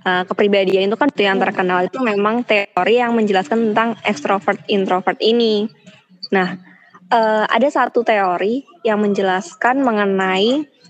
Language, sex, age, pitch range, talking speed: Indonesian, female, 20-39, 205-245 Hz, 120 wpm